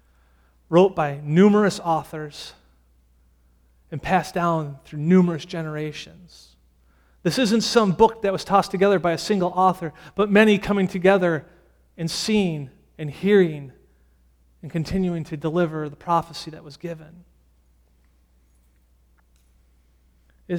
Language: English